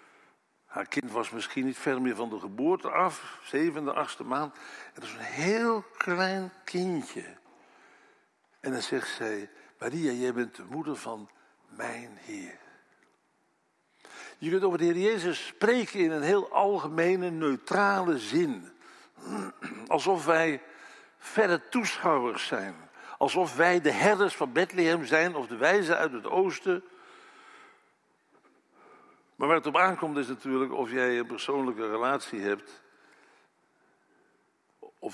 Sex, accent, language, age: male, Dutch, Dutch, 60-79